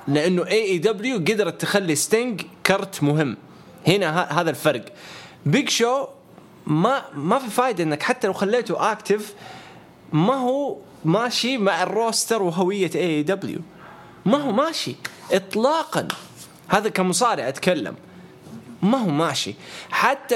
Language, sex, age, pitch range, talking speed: English, male, 20-39, 150-205 Hz, 115 wpm